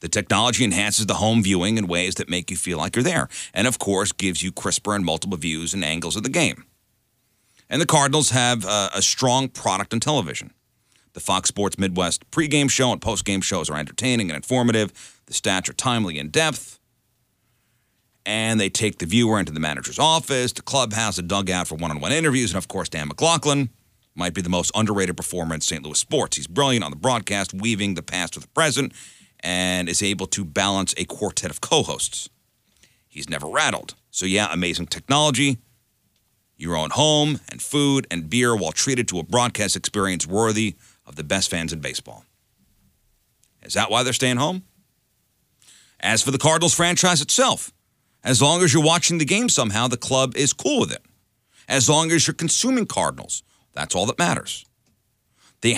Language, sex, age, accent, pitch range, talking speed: English, male, 40-59, American, 95-130 Hz, 185 wpm